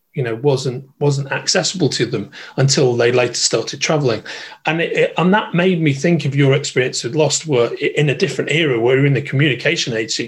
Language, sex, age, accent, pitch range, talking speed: English, male, 30-49, British, 135-175 Hz, 220 wpm